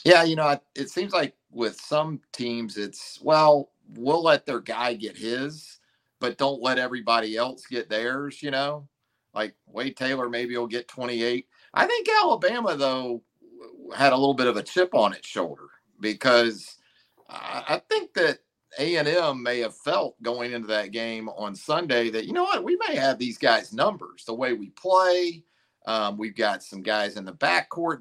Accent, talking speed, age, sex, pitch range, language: American, 180 wpm, 40-59, male, 115-150 Hz, English